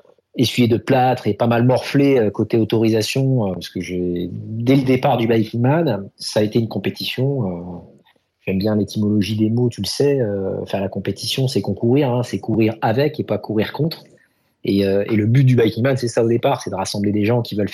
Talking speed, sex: 205 wpm, male